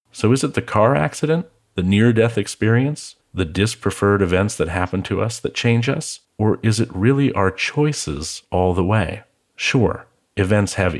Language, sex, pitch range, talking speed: English, male, 90-115 Hz, 170 wpm